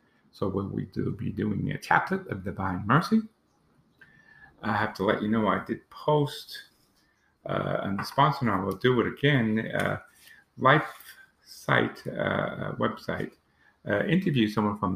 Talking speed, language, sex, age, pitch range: 155 wpm, English, male, 50-69, 105-135 Hz